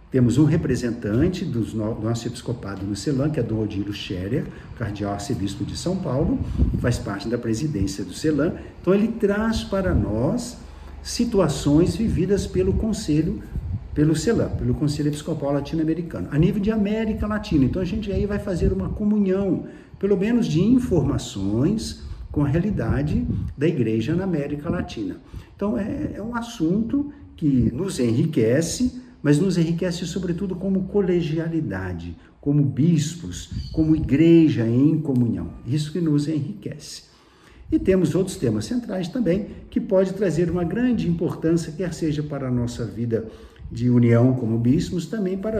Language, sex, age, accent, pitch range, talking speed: Portuguese, male, 60-79, Brazilian, 120-180 Hz, 145 wpm